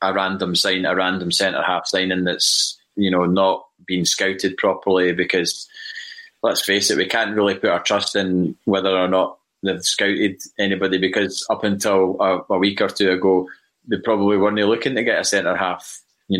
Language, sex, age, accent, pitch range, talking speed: English, male, 20-39, British, 95-110 Hz, 175 wpm